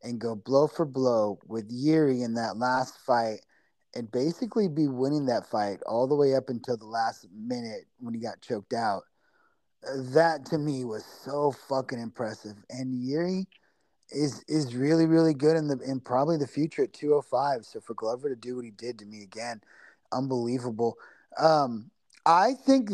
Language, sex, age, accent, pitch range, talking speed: English, male, 30-49, American, 125-155 Hz, 175 wpm